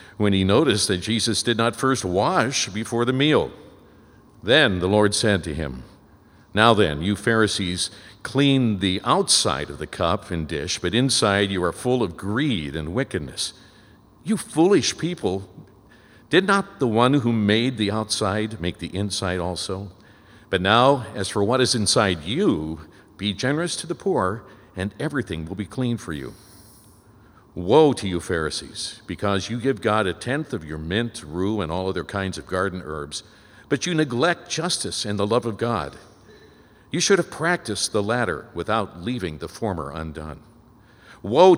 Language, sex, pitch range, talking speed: English, male, 95-120 Hz, 165 wpm